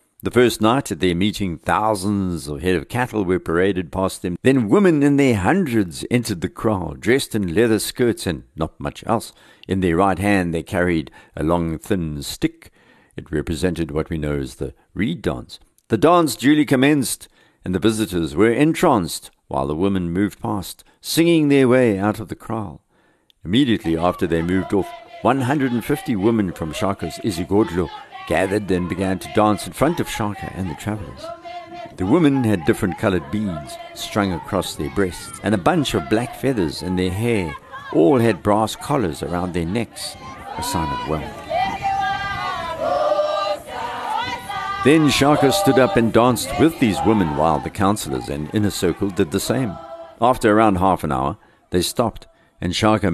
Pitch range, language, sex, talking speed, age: 90-130 Hz, English, male, 170 wpm, 60-79